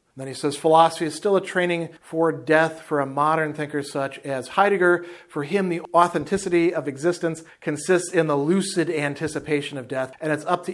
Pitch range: 145-175 Hz